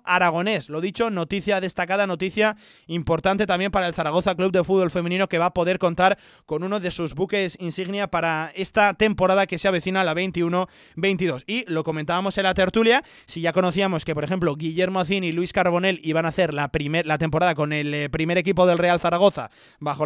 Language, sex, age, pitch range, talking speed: Spanish, male, 20-39, 165-195 Hz, 200 wpm